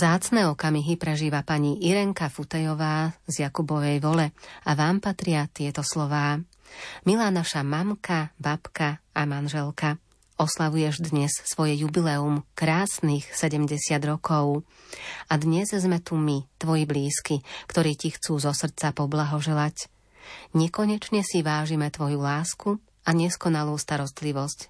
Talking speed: 115 wpm